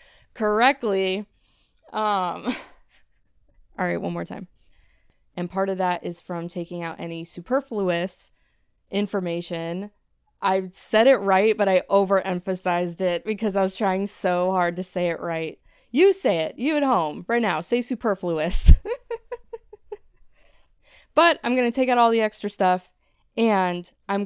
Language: English